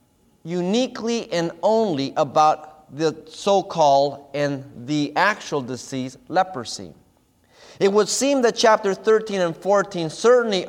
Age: 30-49